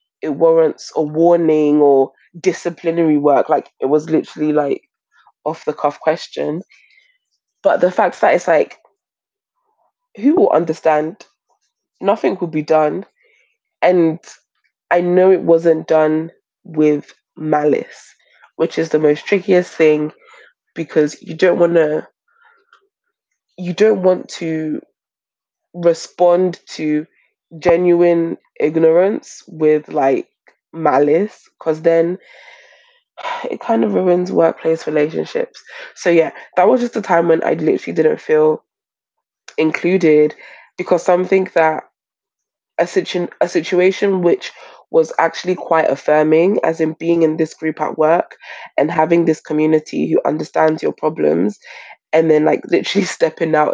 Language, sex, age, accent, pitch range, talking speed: English, female, 20-39, British, 155-190 Hz, 125 wpm